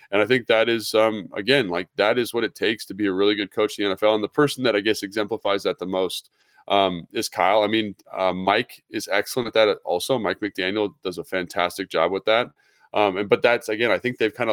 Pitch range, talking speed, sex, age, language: 100-120 Hz, 250 wpm, male, 20-39, English